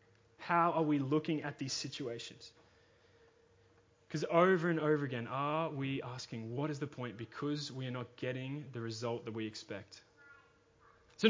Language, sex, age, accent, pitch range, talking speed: English, male, 20-39, Australian, 150-215 Hz, 160 wpm